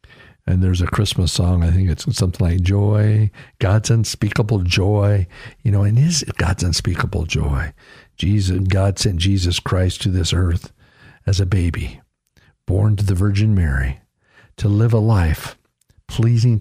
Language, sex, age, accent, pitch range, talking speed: English, male, 50-69, American, 95-135 Hz, 155 wpm